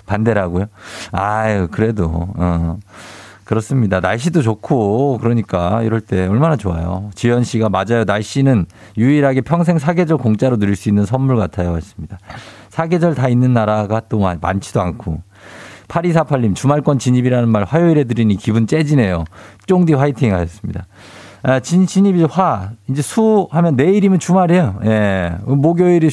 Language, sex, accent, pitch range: Korean, male, native, 100-145 Hz